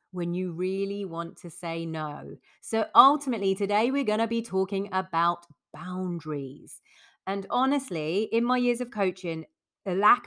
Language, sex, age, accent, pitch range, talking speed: English, female, 30-49, British, 170-210 Hz, 150 wpm